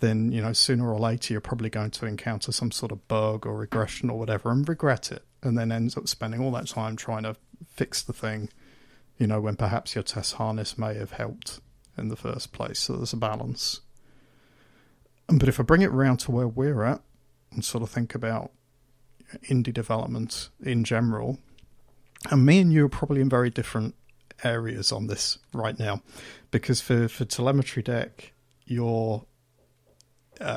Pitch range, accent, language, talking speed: 110-130 Hz, British, English, 185 wpm